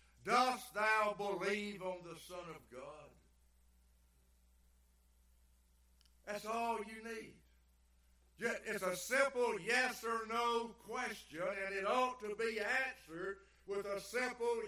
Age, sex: 60-79, male